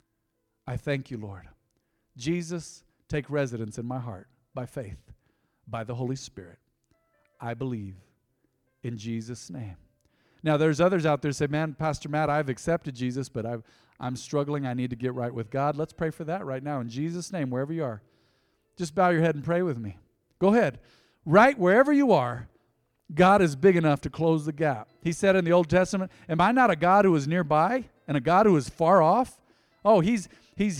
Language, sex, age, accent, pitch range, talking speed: English, male, 50-69, American, 125-180 Hz, 200 wpm